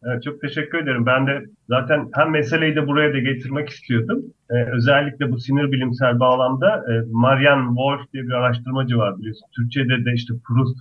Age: 40-59